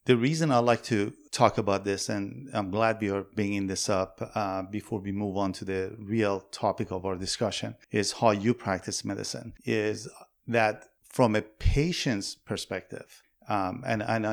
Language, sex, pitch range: English, male, 95-110 Hz